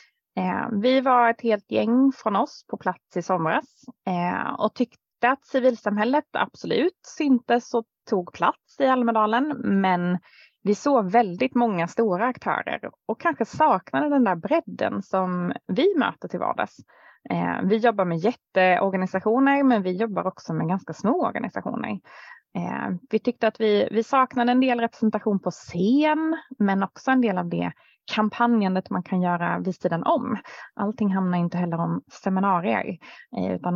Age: 20-39